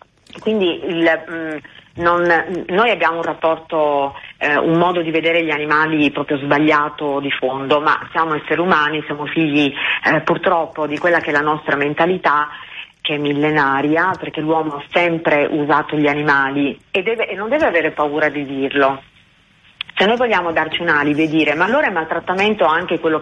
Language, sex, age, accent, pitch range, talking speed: Italian, female, 40-59, native, 150-185 Hz, 170 wpm